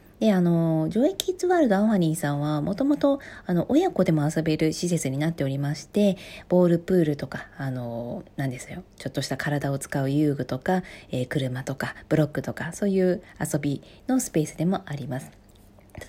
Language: Japanese